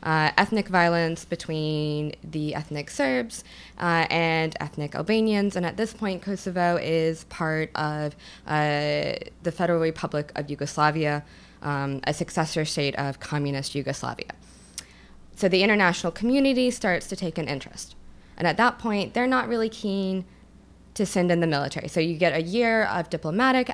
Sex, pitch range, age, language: female, 150-190 Hz, 20-39, English